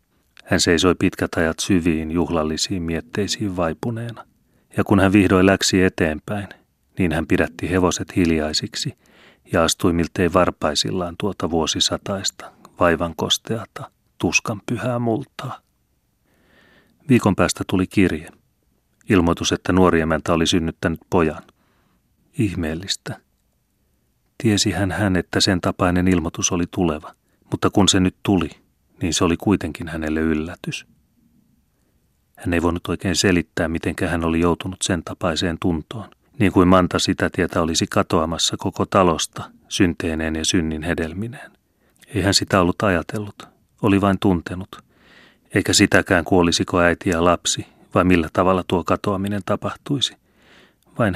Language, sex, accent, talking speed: Finnish, male, native, 125 wpm